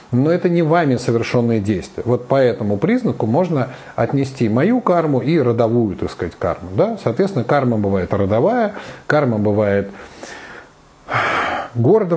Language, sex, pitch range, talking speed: Russian, male, 110-140 Hz, 130 wpm